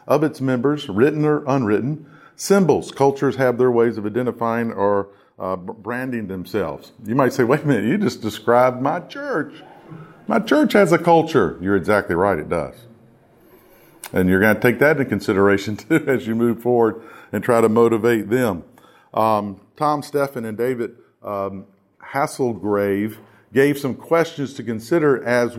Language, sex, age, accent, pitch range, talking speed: English, male, 50-69, American, 110-150 Hz, 160 wpm